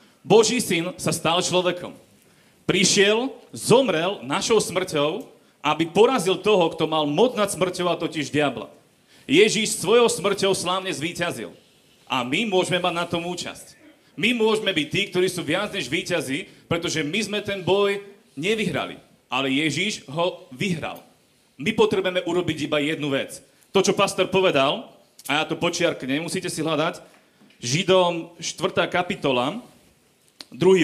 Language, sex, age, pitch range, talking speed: Slovak, male, 30-49, 160-200 Hz, 140 wpm